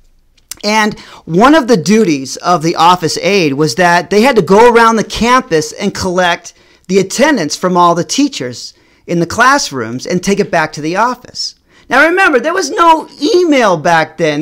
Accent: American